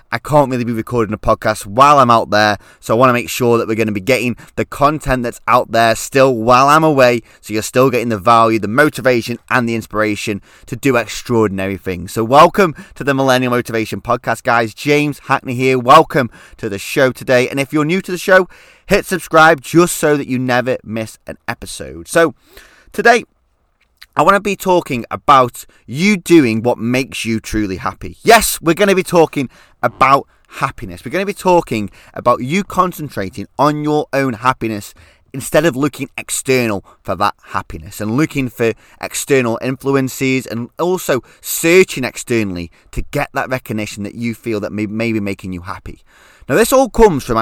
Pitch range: 110-150 Hz